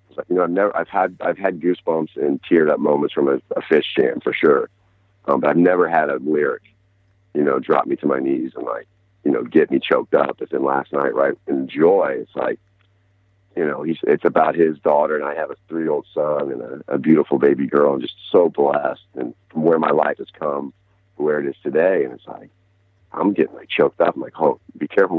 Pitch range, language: 75-100 Hz, English